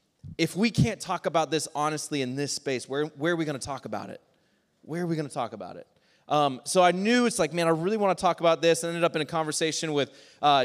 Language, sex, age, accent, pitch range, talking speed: English, male, 20-39, American, 150-175 Hz, 275 wpm